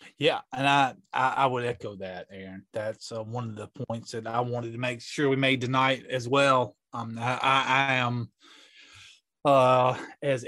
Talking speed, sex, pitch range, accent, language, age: 185 wpm, male, 115-130 Hz, American, English, 30-49